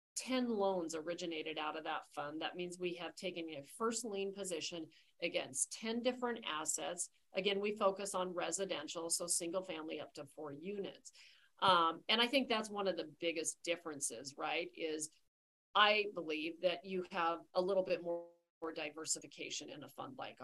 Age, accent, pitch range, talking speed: 40-59, American, 165-210 Hz, 170 wpm